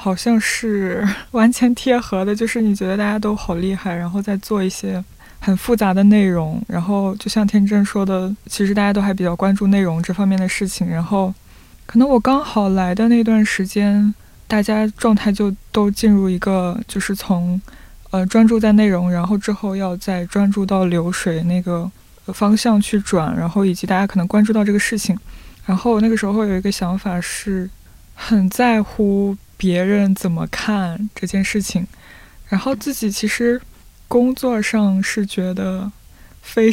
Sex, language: female, Chinese